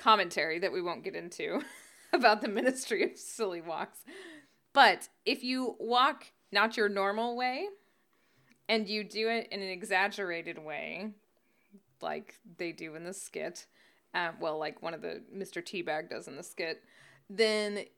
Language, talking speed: English, 155 wpm